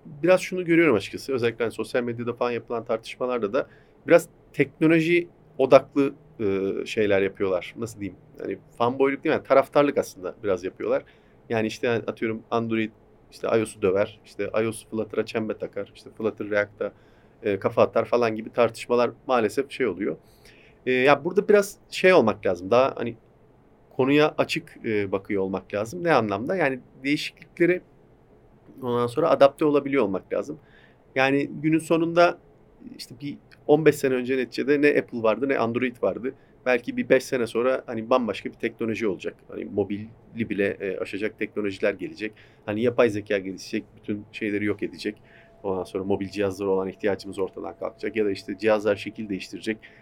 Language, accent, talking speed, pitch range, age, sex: Turkish, native, 160 wpm, 105-140 Hz, 40-59, male